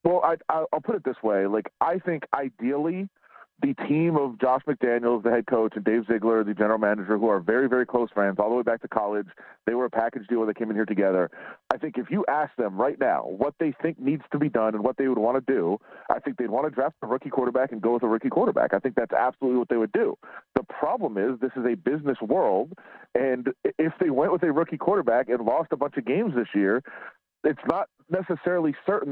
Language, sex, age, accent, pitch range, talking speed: English, male, 30-49, American, 115-150 Hz, 245 wpm